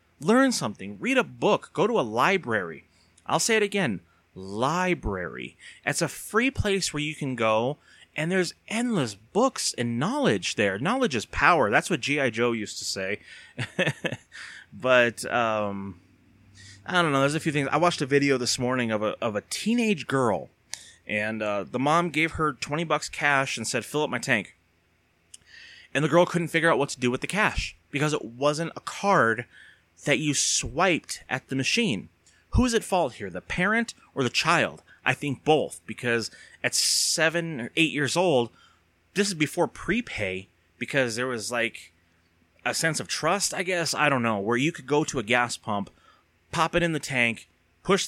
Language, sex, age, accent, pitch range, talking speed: English, male, 30-49, American, 110-165 Hz, 185 wpm